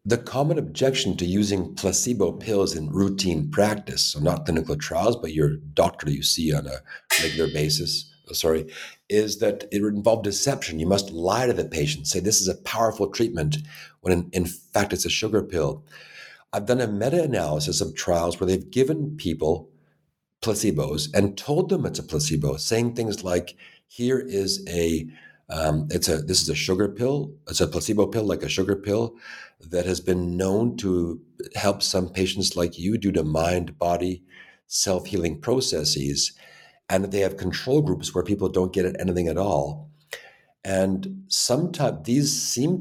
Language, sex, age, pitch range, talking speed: English, male, 50-69, 80-105 Hz, 170 wpm